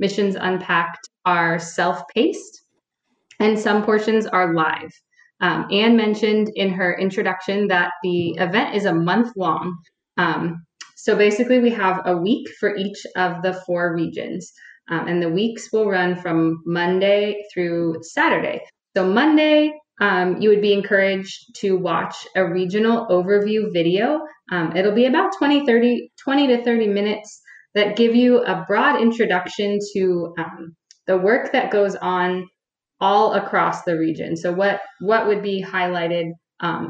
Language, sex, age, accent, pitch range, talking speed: English, female, 20-39, American, 175-215 Hz, 150 wpm